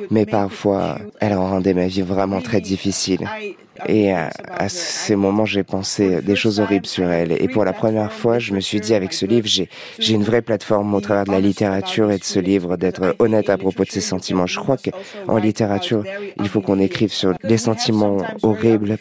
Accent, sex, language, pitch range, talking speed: French, male, French, 100-120 Hz, 210 wpm